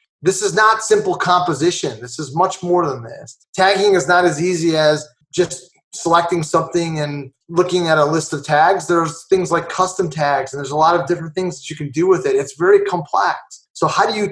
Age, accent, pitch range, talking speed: 30-49, American, 145-185 Hz, 220 wpm